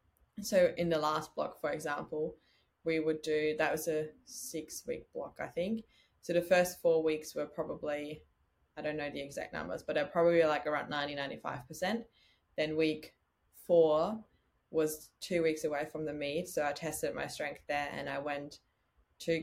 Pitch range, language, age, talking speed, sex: 145-165 Hz, English, 20-39, 175 wpm, female